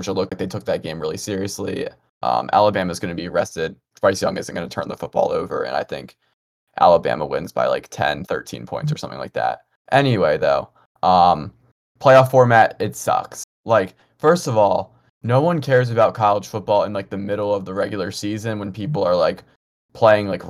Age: 20-39